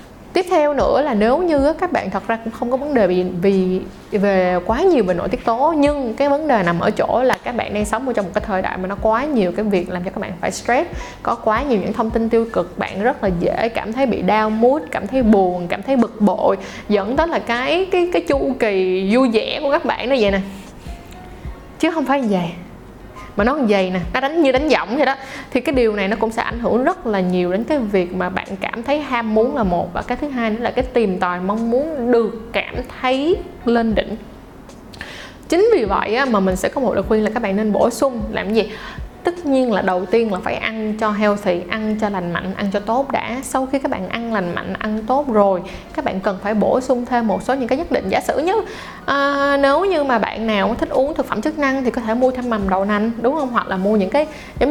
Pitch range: 200-265 Hz